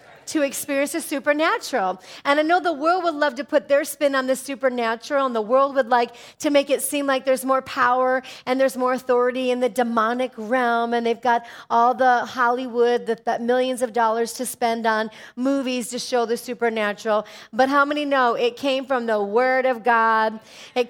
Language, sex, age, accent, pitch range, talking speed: English, female, 40-59, American, 230-275 Hz, 200 wpm